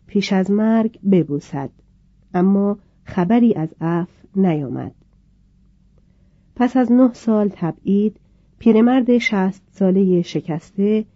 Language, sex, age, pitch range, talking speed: Persian, female, 40-59, 170-215 Hz, 100 wpm